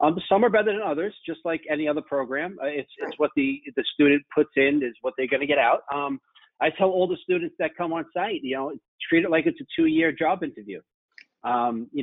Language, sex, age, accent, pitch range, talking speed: English, male, 40-59, American, 120-155 Hz, 250 wpm